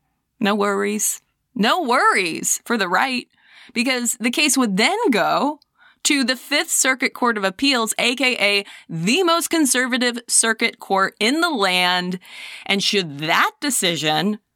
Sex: female